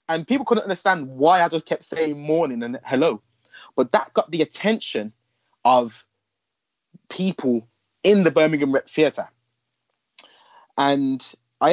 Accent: British